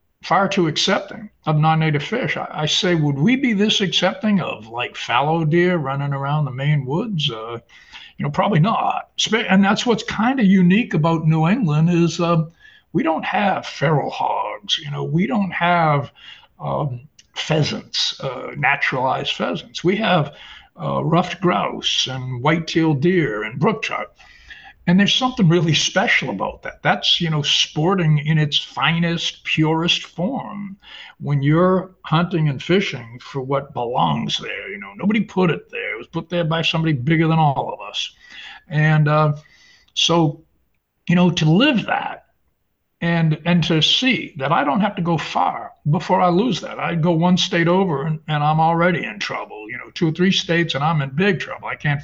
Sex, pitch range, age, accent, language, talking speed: male, 150-185 Hz, 60-79, American, English, 180 wpm